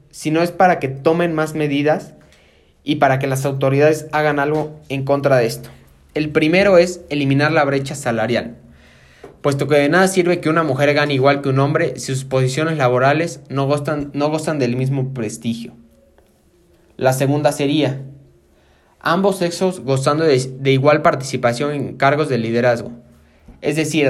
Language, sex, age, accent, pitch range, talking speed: Spanish, male, 20-39, Mexican, 130-155 Hz, 160 wpm